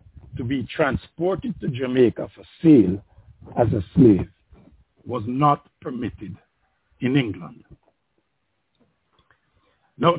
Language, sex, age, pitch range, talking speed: English, male, 60-79, 110-155 Hz, 95 wpm